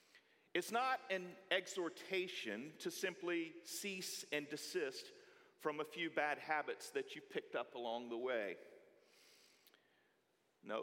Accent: American